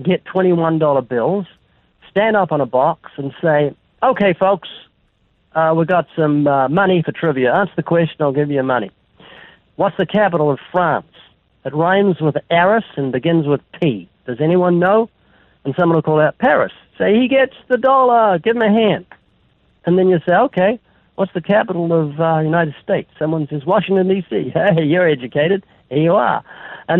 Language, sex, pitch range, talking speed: English, male, 150-195 Hz, 180 wpm